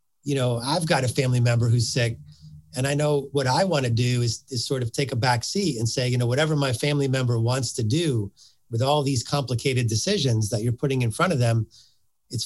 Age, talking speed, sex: 50-69, 230 wpm, male